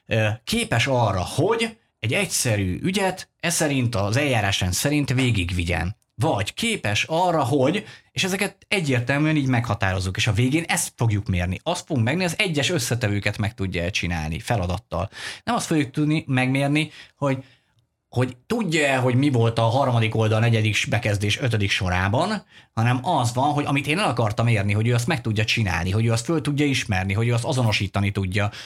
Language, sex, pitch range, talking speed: Hungarian, male, 100-140 Hz, 170 wpm